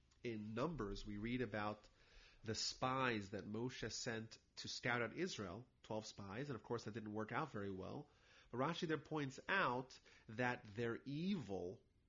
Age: 30-49